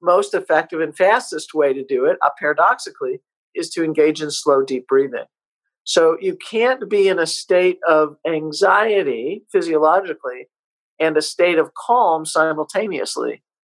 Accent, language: American, English